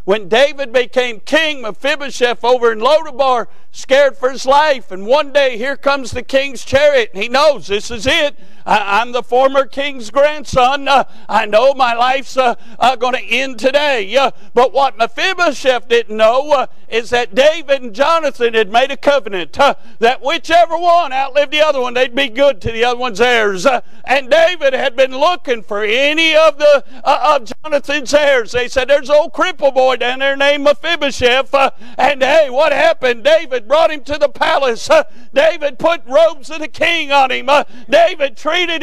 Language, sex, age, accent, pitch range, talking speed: English, male, 50-69, American, 245-310 Hz, 190 wpm